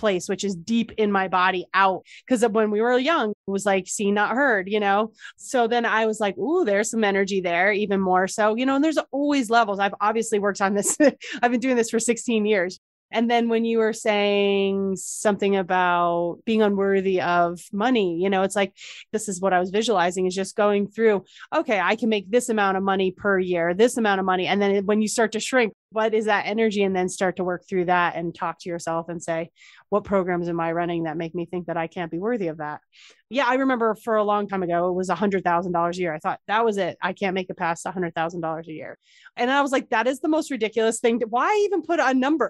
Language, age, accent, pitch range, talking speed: English, 30-49, American, 180-225 Hz, 255 wpm